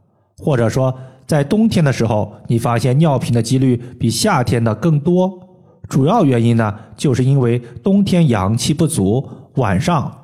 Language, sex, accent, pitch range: Chinese, male, native, 115-160 Hz